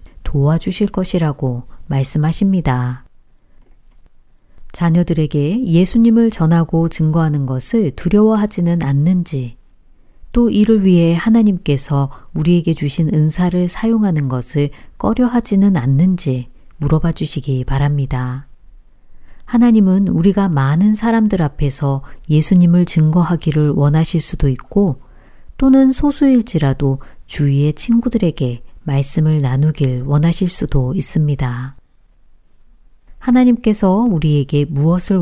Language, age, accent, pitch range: Korean, 40-59, native, 135-190 Hz